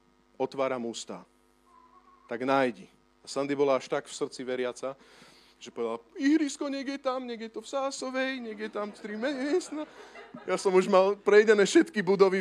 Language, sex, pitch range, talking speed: Slovak, male, 160-220 Hz, 155 wpm